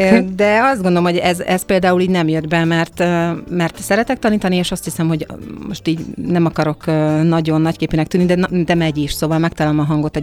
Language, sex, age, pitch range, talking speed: Hungarian, female, 40-59, 150-185 Hz, 205 wpm